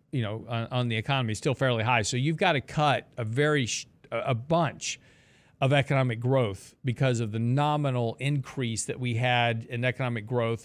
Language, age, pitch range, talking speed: English, 40-59, 120-150 Hz, 180 wpm